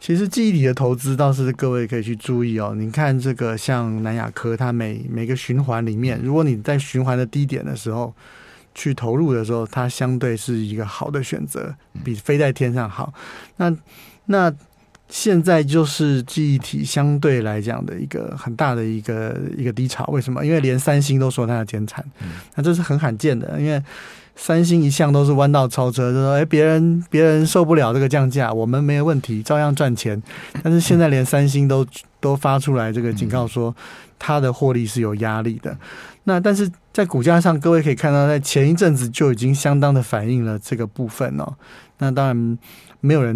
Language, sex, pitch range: Chinese, male, 120-150 Hz